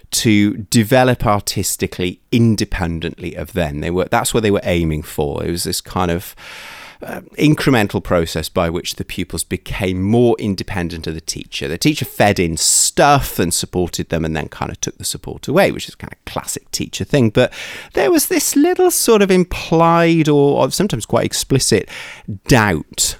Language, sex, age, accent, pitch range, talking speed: English, male, 30-49, British, 85-115 Hz, 175 wpm